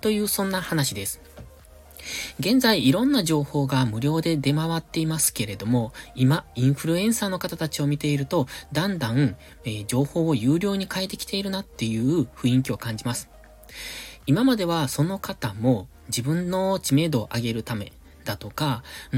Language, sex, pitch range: Japanese, male, 115-175 Hz